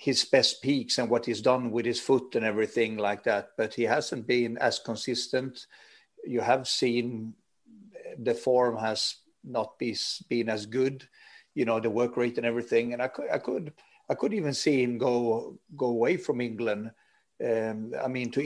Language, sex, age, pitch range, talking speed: English, male, 50-69, 115-130 Hz, 180 wpm